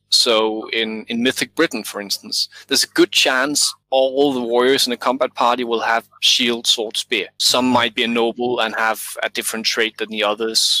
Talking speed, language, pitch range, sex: 205 wpm, English, 110-125 Hz, male